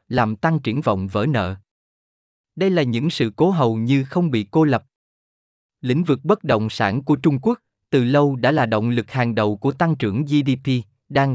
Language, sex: Vietnamese, male